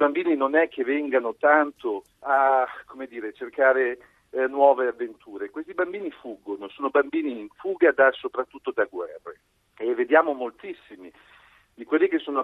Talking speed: 150 wpm